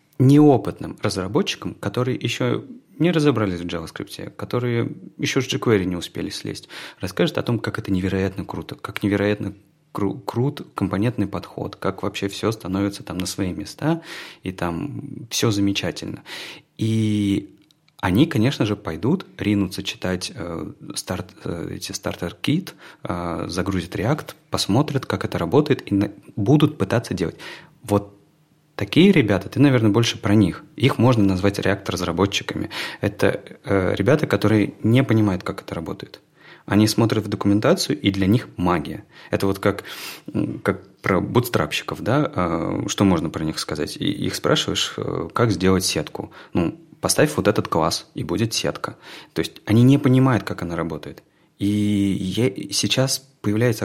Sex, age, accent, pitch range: male, 30-49, native, 95-125 Hz